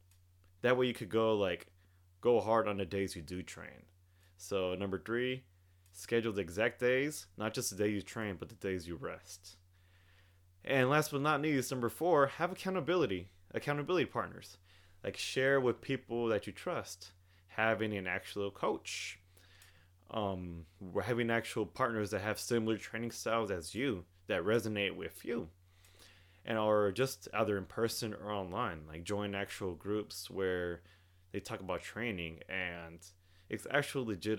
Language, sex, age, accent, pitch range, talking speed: English, male, 20-39, American, 90-115 Hz, 155 wpm